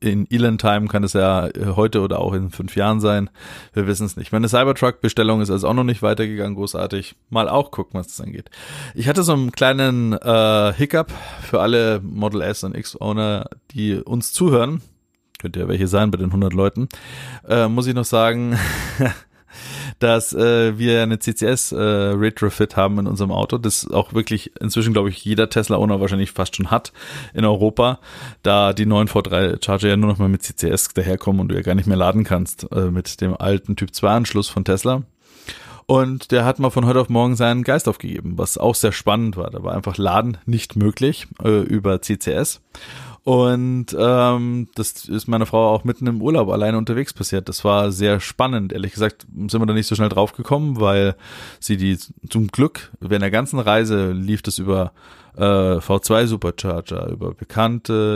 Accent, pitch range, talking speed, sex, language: German, 100-120 Hz, 185 wpm, male, German